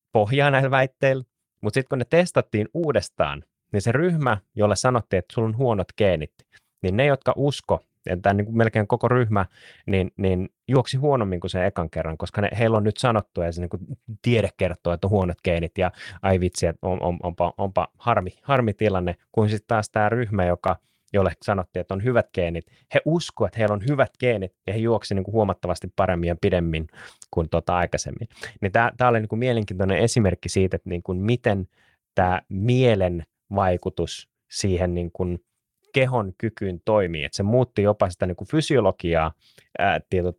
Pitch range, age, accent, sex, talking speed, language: 90-115 Hz, 30-49, native, male, 165 wpm, Finnish